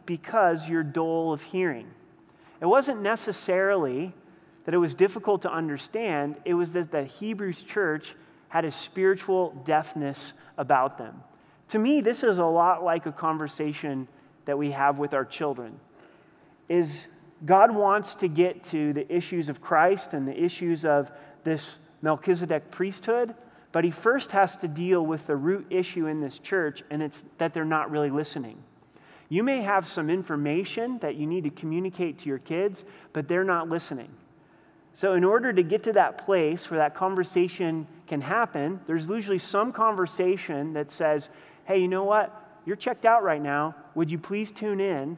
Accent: American